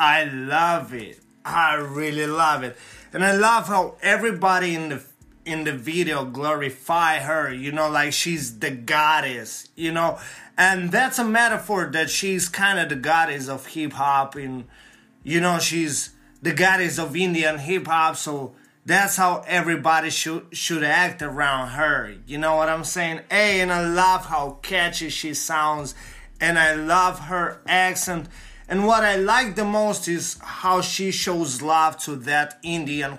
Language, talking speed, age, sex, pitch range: English, 160 wpm, 30-49, male, 150-185 Hz